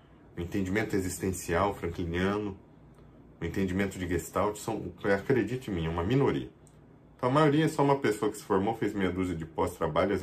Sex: male